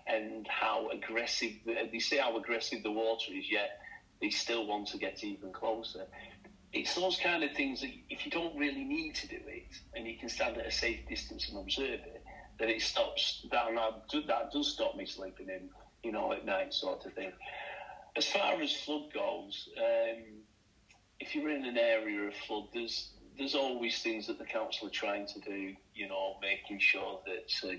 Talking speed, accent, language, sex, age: 200 wpm, British, English, male, 40-59